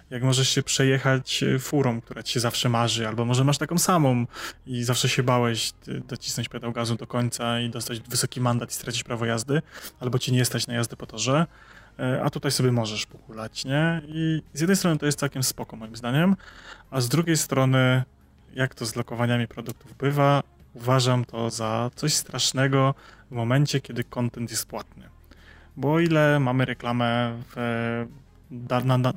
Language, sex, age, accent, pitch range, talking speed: Polish, male, 20-39, native, 120-140 Hz, 175 wpm